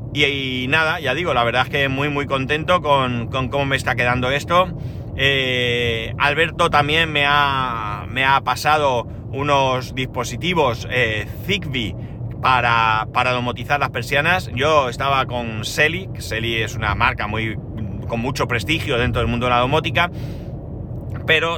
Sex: male